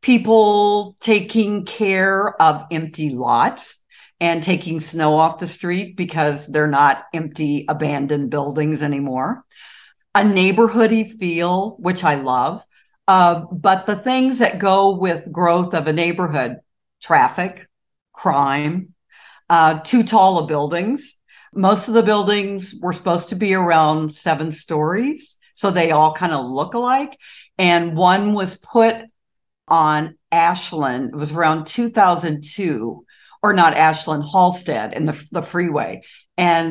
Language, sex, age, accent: English, female, 50-69, American